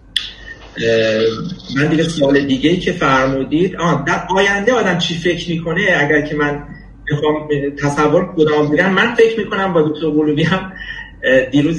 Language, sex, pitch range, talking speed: Persian, male, 135-165 Hz, 135 wpm